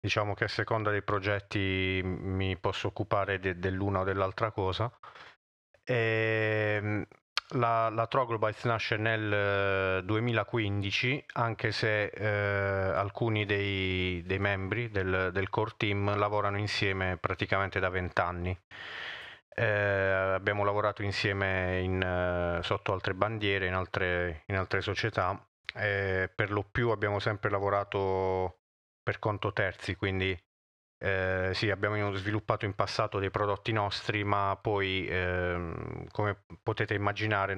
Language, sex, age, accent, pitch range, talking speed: Italian, male, 30-49, native, 95-110 Hz, 115 wpm